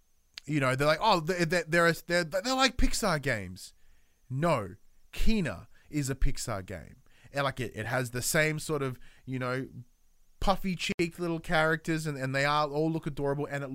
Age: 20-39